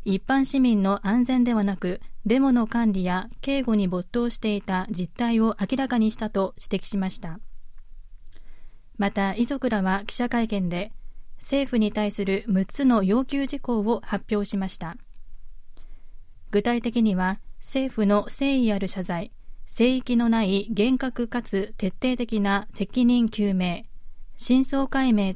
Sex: female